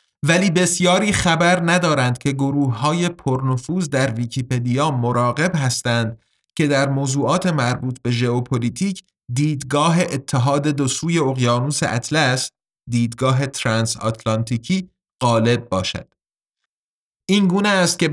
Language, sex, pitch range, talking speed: Persian, male, 125-165 Hz, 105 wpm